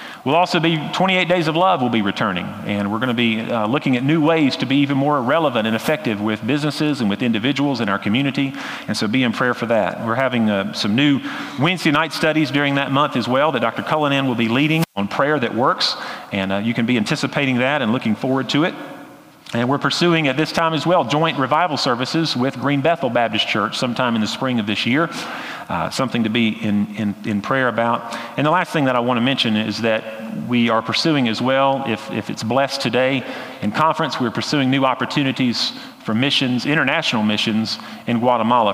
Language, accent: English, American